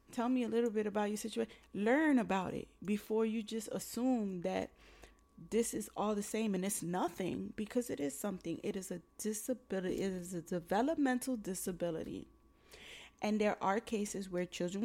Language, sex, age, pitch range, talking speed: English, female, 20-39, 180-220 Hz, 175 wpm